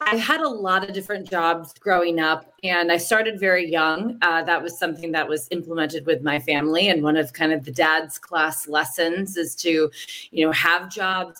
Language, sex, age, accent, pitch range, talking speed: English, female, 30-49, American, 175-245 Hz, 205 wpm